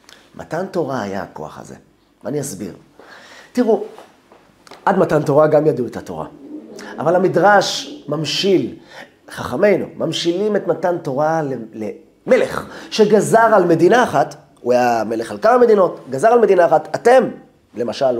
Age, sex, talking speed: 30-49, male, 130 wpm